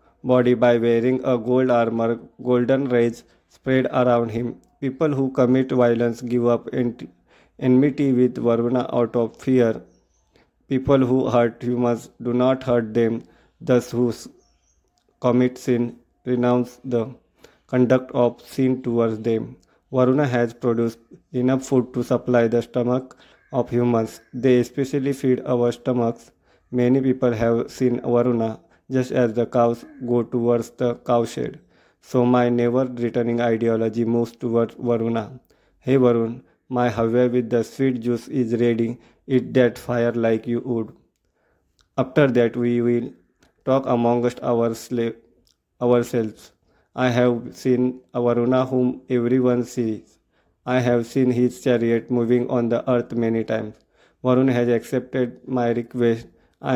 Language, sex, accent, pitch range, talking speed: English, male, Indian, 115-125 Hz, 135 wpm